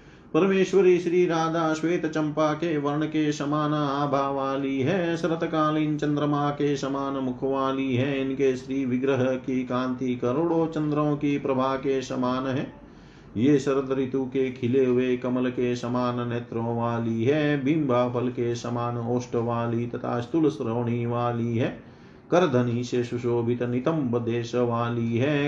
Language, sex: Hindi, male